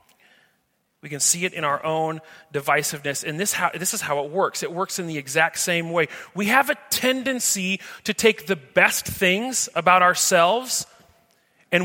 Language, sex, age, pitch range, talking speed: English, male, 30-49, 170-225 Hz, 175 wpm